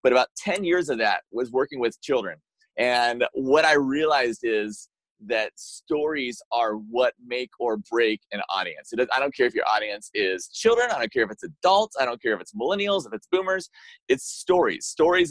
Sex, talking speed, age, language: male, 195 wpm, 30-49, English